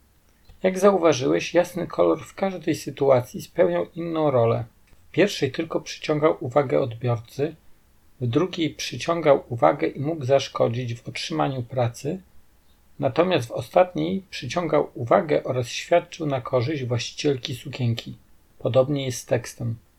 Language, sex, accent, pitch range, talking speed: Polish, male, native, 120-155 Hz, 125 wpm